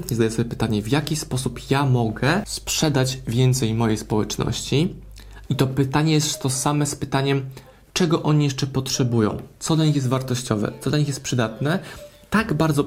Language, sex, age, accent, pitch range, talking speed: Polish, male, 20-39, native, 120-145 Hz, 175 wpm